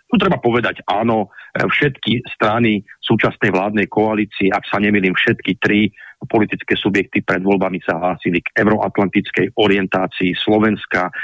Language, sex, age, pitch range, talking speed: Slovak, male, 40-59, 105-130 Hz, 135 wpm